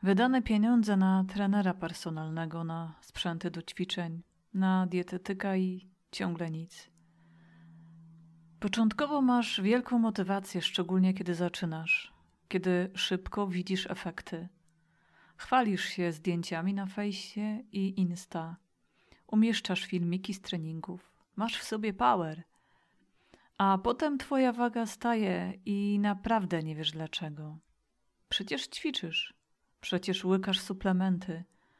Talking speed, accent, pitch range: 105 wpm, native, 170-215 Hz